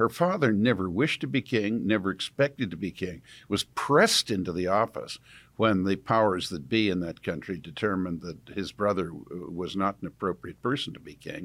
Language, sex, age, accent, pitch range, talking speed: English, male, 60-79, American, 100-130 Hz, 195 wpm